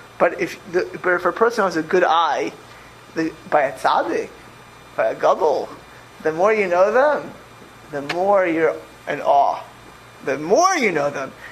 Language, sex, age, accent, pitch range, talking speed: English, male, 30-49, American, 175-230 Hz, 170 wpm